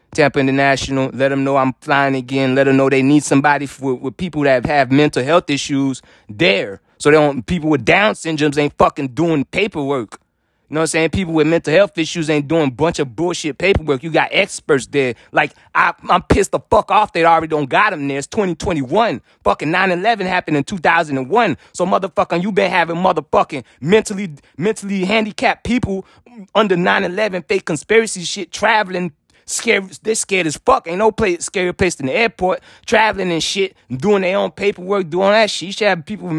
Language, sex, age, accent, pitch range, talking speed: English, male, 20-39, American, 145-200 Hz, 195 wpm